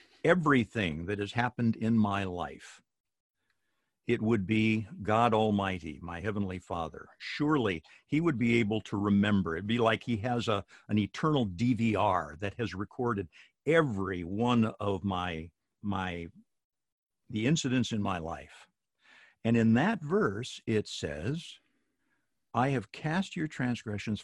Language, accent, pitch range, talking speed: English, American, 100-125 Hz, 135 wpm